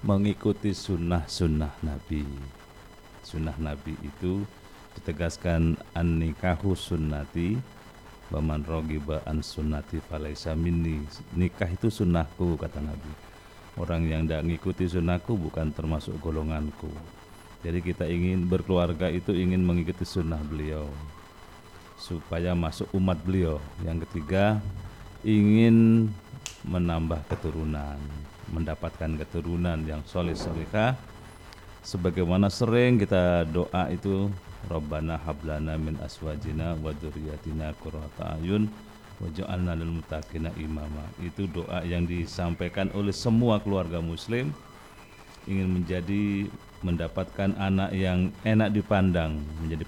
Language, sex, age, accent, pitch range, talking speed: Indonesian, male, 40-59, native, 80-100 Hz, 95 wpm